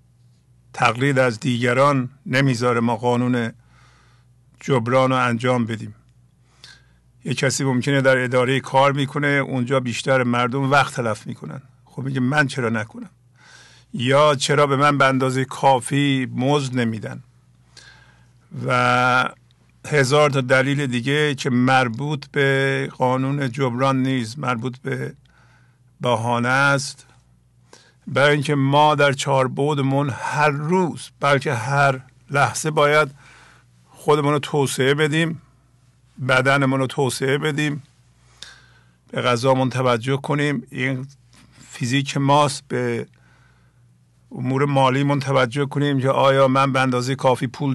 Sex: male